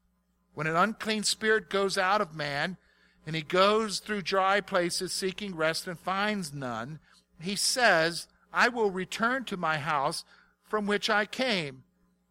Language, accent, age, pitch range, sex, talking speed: English, American, 50-69, 140-205 Hz, male, 150 wpm